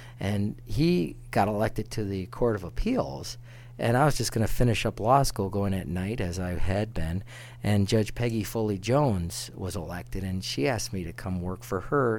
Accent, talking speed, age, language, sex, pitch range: American, 200 wpm, 50-69, English, male, 100-120 Hz